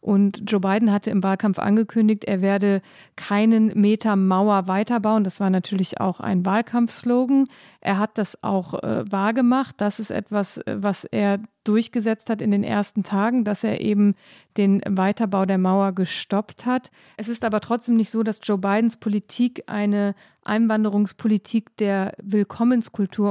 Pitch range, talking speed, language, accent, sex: 200-225 Hz, 150 wpm, German, German, female